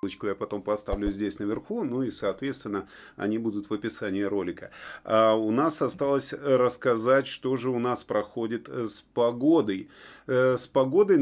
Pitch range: 120-175 Hz